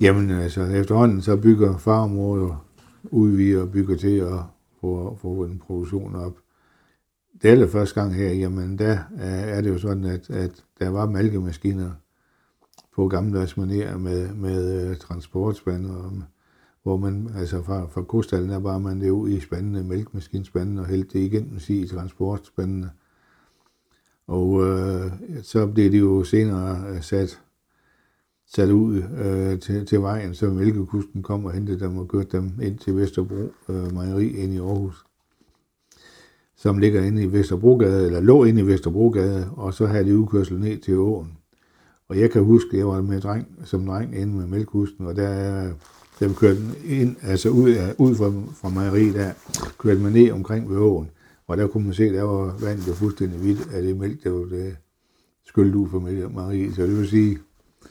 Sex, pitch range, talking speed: male, 95-105 Hz, 165 wpm